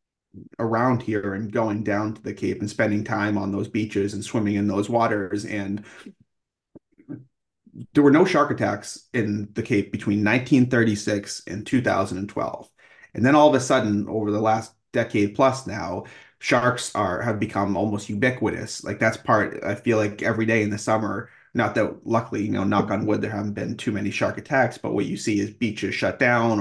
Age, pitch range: 30-49, 105-115 Hz